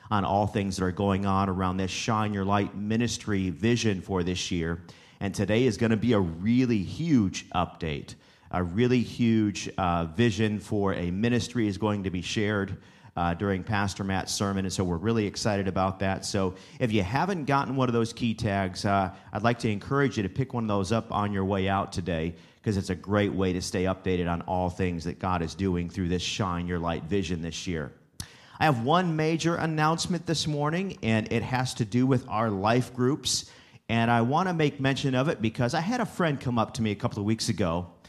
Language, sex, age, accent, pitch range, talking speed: English, male, 40-59, American, 95-135 Hz, 220 wpm